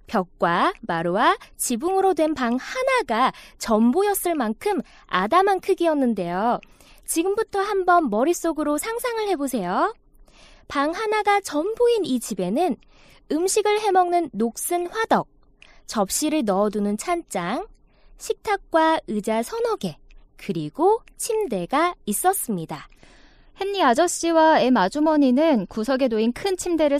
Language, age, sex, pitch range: Korean, 20-39, female, 220-340 Hz